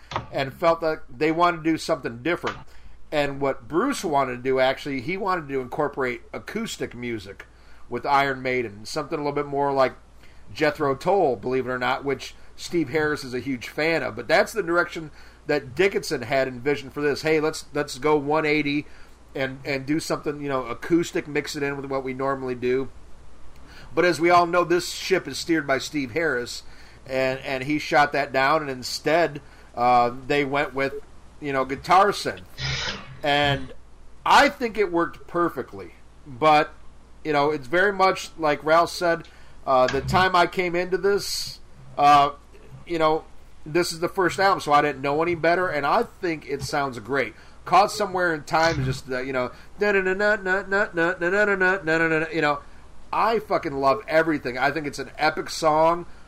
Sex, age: male, 40-59